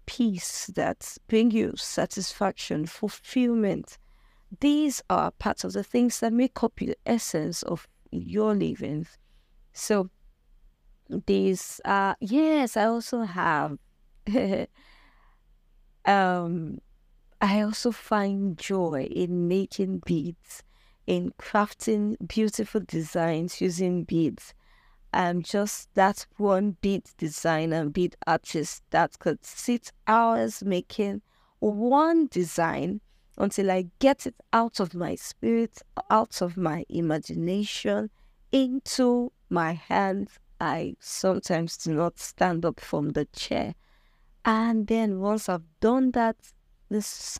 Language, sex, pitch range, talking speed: English, female, 165-220 Hz, 110 wpm